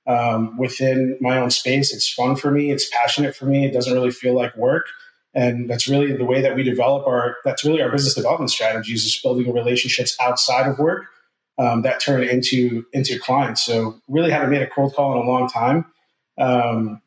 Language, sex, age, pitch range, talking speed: English, male, 30-49, 125-140 Hz, 205 wpm